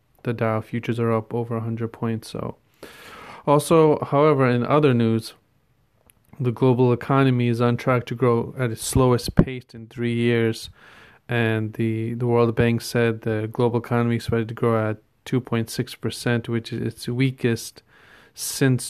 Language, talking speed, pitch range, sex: English, 155 wpm, 115-125 Hz, male